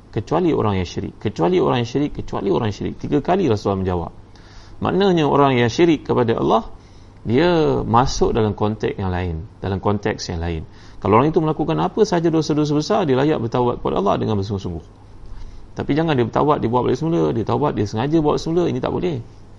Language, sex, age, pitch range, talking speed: Malay, male, 30-49, 100-140 Hz, 200 wpm